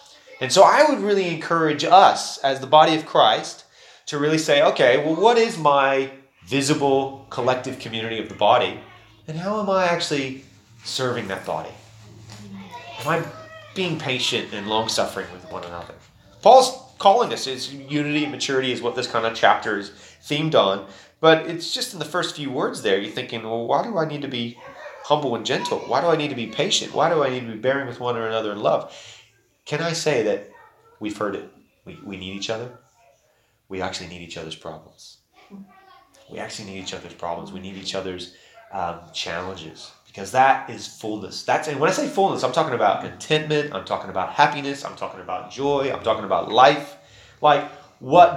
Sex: male